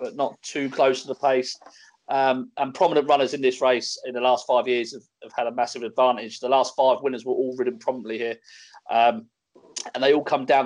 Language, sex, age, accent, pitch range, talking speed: English, male, 40-59, British, 125-165 Hz, 225 wpm